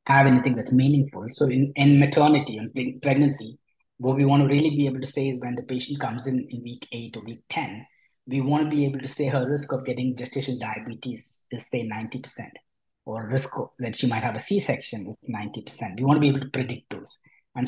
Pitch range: 120-140 Hz